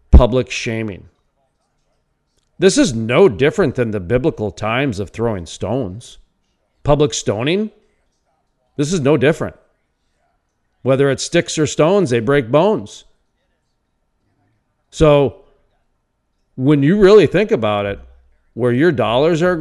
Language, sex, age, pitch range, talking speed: English, male, 40-59, 110-160 Hz, 115 wpm